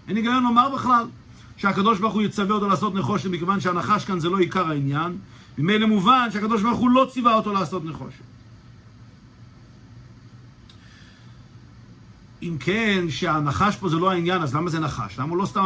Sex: male